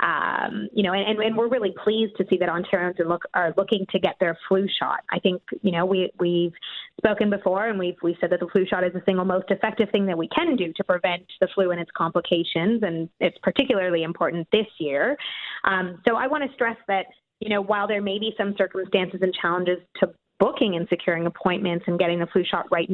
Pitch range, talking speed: 180-210 Hz, 230 wpm